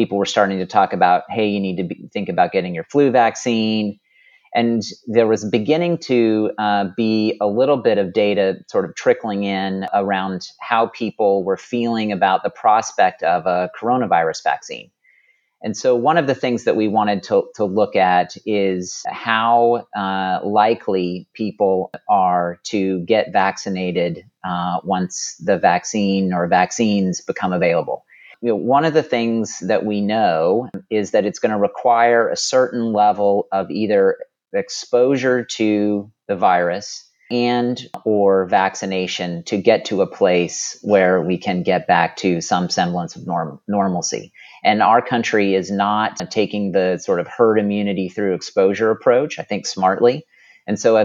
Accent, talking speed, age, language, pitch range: American, 160 wpm, 30-49, English, 95-115 Hz